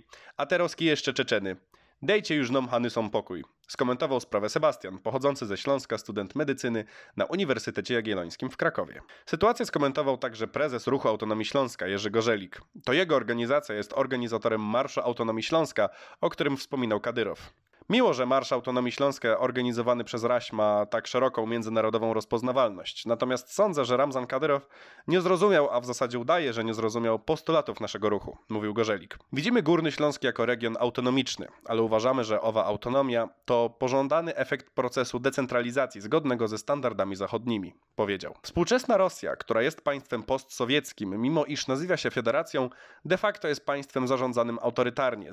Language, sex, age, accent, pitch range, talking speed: Polish, male, 20-39, native, 115-140 Hz, 150 wpm